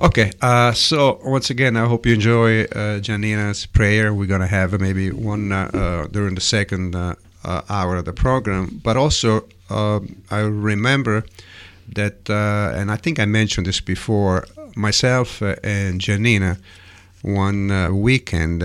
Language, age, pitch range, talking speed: English, 50-69, 90-110 Hz, 160 wpm